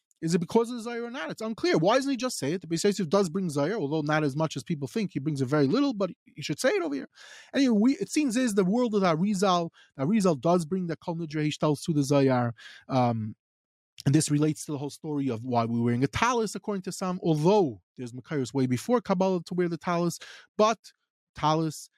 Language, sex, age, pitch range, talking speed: English, male, 20-39, 145-205 Hz, 245 wpm